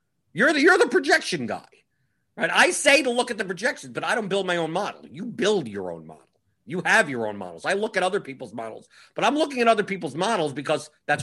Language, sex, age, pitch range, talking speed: English, male, 50-69, 125-175 Hz, 245 wpm